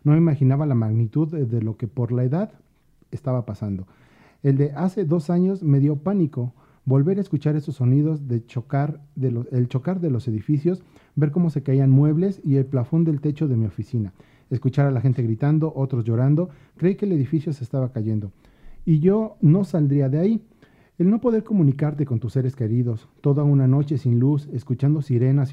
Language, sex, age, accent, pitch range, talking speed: Spanish, male, 40-59, Mexican, 125-155 Hz, 190 wpm